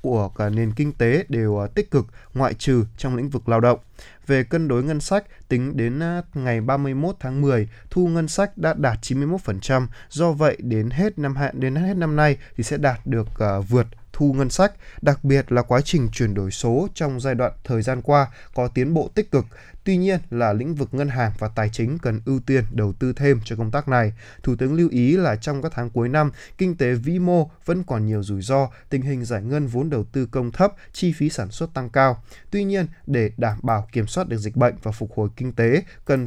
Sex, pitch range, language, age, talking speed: male, 115-155 Hz, Vietnamese, 20-39, 230 wpm